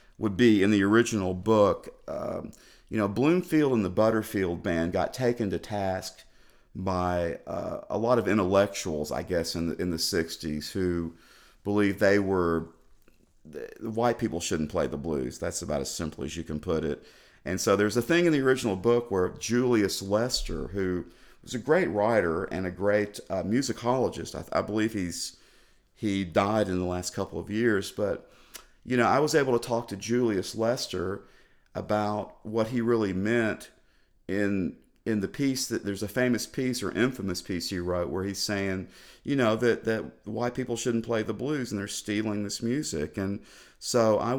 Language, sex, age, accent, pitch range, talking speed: English, male, 50-69, American, 90-115 Hz, 180 wpm